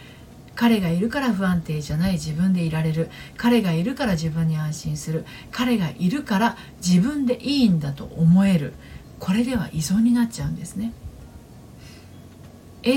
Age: 50-69